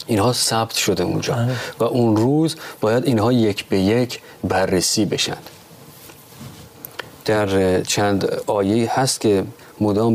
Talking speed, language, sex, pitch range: 120 wpm, Persian, male, 100-125 Hz